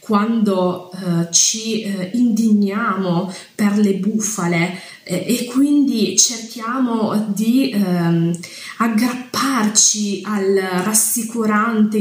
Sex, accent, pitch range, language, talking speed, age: female, native, 185-220 Hz, Italian, 85 wpm, 20-39